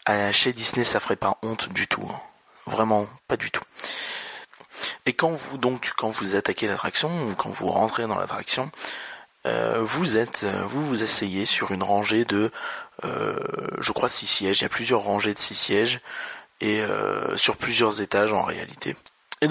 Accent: French